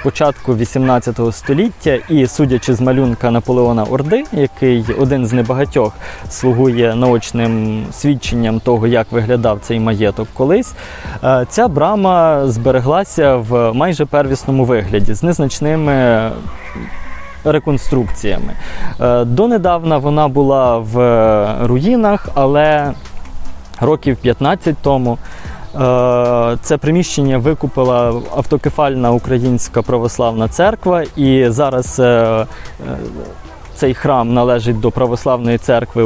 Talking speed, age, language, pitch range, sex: 95 wpm, 20-39, Ukrainian, 120-145 Hz, male